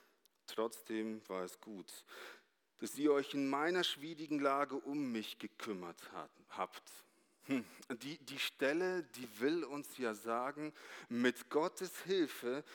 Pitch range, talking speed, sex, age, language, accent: 110-140 Hz, 125 wpm, male, 40-59, German, German